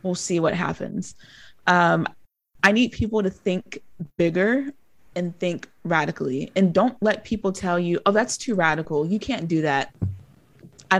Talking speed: 160 wpm